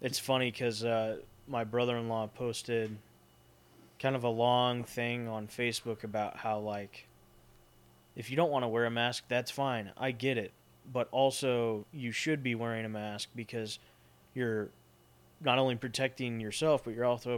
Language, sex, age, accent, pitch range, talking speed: English, male, 20-39, American, 110-125 Hz, 160 wpm